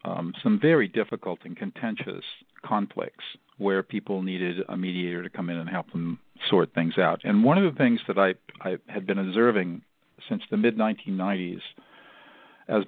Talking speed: 170 wpm